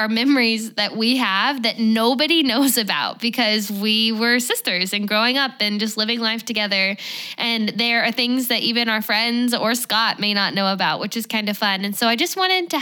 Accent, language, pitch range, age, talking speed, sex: American, English, 200-240 Hz, 10-29, 210 wpm, female